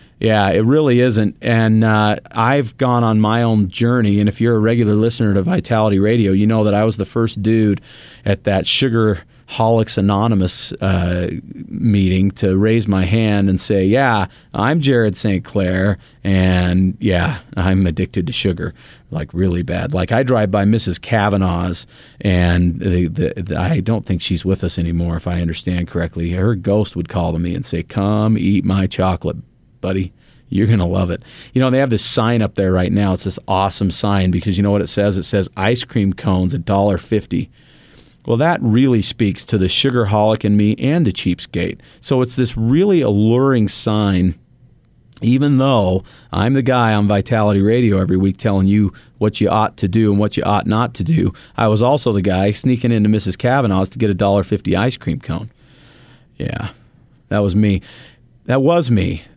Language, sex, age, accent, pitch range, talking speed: English, male, 40-59, American, 95-115 Hz, 190 wpm